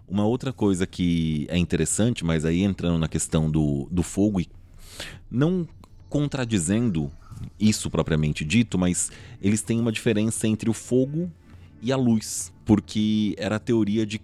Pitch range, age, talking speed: 90-130 Hz, 30-49, 150 wpm